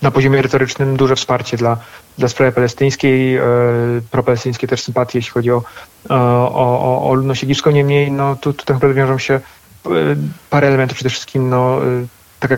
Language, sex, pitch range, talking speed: Polish, male, 120-130 Hz, 155 wpm